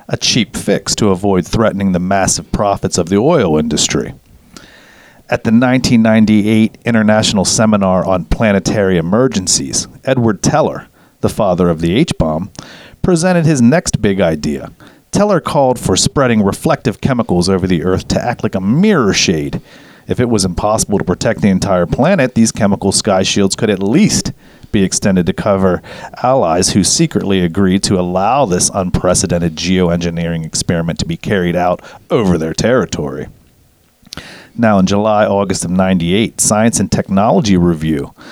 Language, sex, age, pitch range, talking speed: English, male, 40-59, 90-110 Hz, 145 wpm